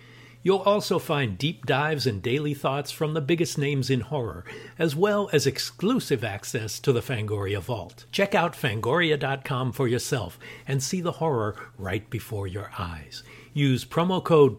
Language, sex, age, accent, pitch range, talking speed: English, male, 60-79, American, 115-155 Hz, 160 wpm